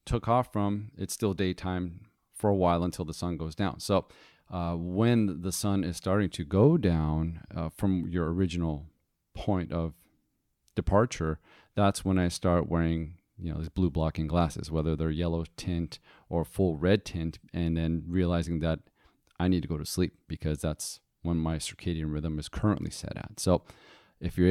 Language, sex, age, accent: English, male, 40-59, American